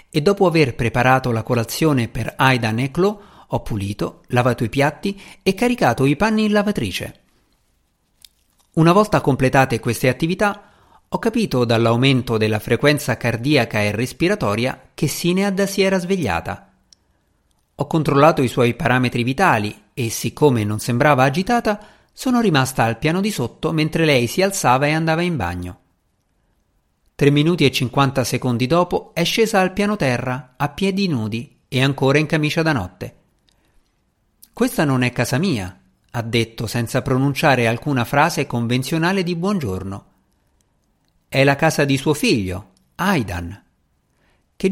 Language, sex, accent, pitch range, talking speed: Italian, male, native, 115-165 Hz, 140 wpm